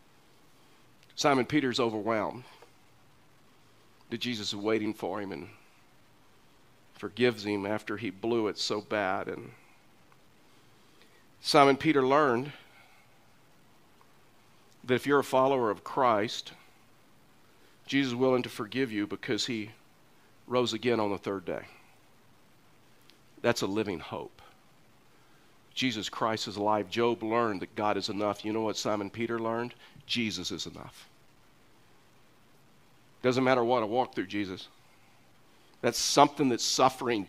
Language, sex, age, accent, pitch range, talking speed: English, male, 50-69, American, 115-160 Hz, 125 wpm